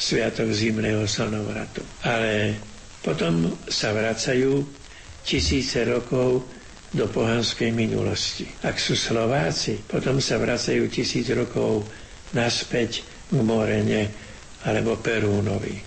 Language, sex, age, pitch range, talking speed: Slovak, male, 60-79, 105-115 Hz, 95 wpm